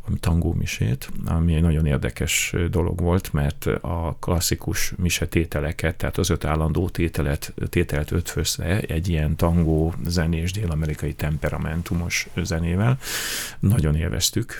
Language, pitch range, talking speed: Hungarian, 80-95 Hz, 125 wpm